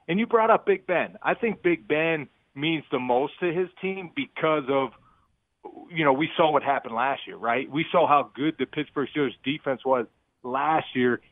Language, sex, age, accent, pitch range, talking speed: English, male, 40-59, American, 130-150 Hz, 200 wpm